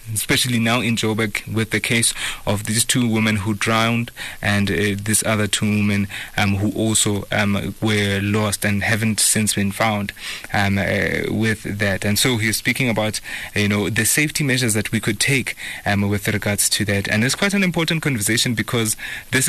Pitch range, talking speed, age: 105-120 Hz, 190 wpm, 20-39